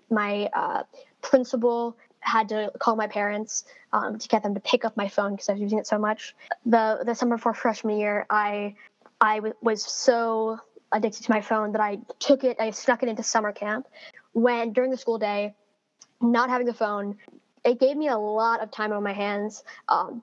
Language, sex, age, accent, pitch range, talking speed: English, female, 10-29, American, 210-245 Hz, 205 wpm